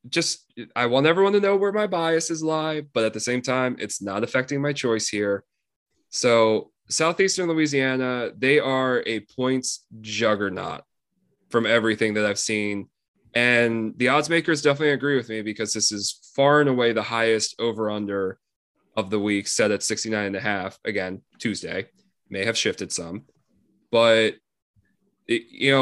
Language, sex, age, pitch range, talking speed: English, male, 20-39, 110-140 Hz, 160 wpm